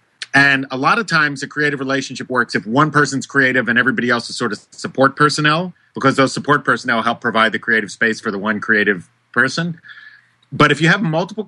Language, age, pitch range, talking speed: English, 30-49, 115-150 Hz, 210 wpm